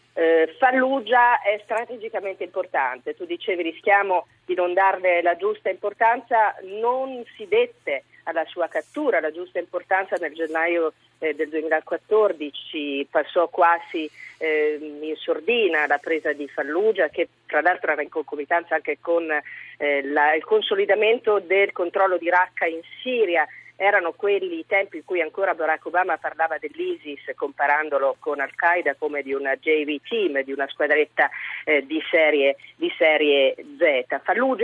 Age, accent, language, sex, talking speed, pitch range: 40-59, native, Italian, female, 135 wpm, 155-230 Hz